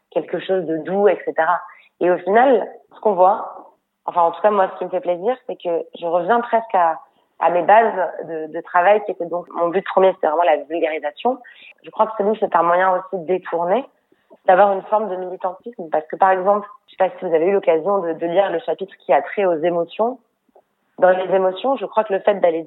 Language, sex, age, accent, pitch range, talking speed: French, female, 20-39, French, 170-205 Hz, 235 wpm